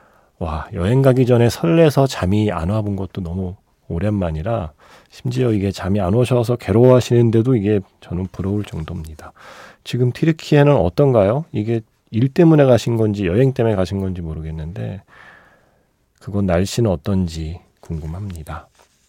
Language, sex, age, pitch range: Korean, male, 40-59, 90-130 Hz